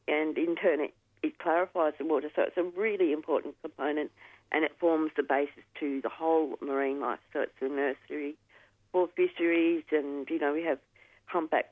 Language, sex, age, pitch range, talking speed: English, female, 50-69, 145-170 Hz, 185 wpm